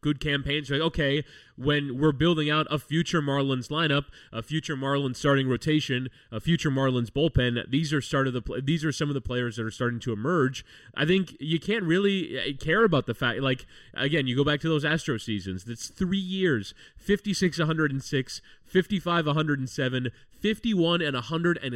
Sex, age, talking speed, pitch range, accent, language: male, 20-39, 200 wpm, 125-160 Hz, American, English